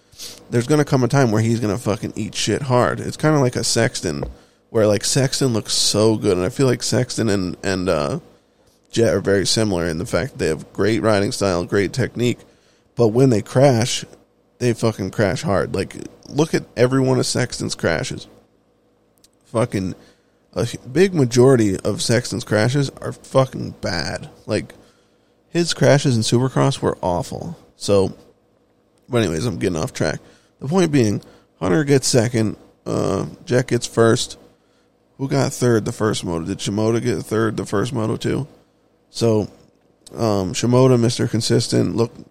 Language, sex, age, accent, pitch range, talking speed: English, male, 20-39, American, 105-125 Hz, 165 wpm